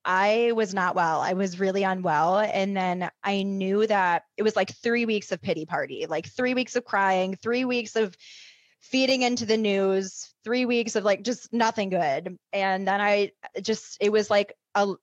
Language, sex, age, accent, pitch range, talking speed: English, female, 20-39, American, 180-210 Hz, 190 wpm